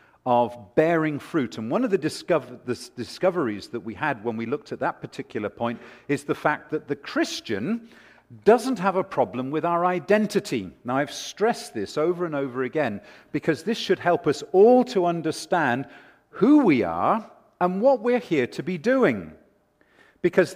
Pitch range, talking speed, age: 130-200 Hz, 170 wpm, 50-69